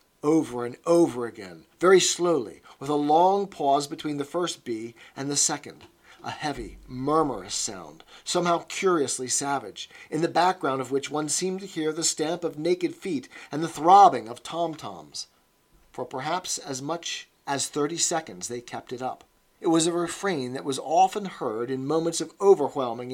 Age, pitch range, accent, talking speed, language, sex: 40-59, 135-175 Hz, American, 170 wpm, English, male